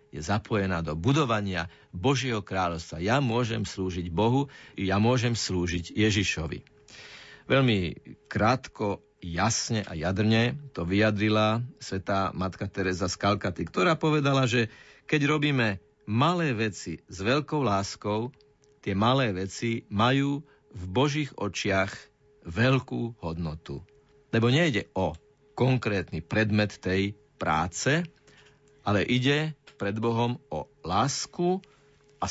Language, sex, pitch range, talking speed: Slovak, male, 100-135 Hz, 110 wpm